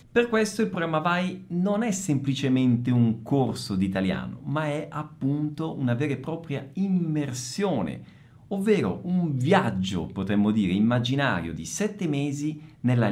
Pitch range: 120-180 Hz